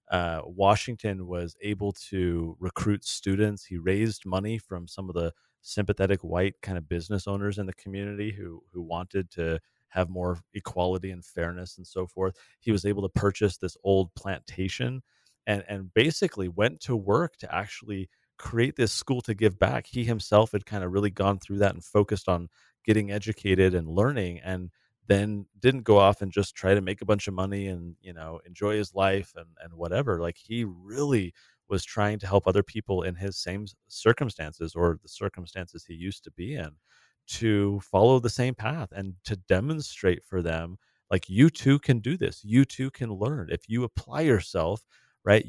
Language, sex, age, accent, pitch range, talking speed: English, male, 30-49, American, 90-110 Hz, 185 wpm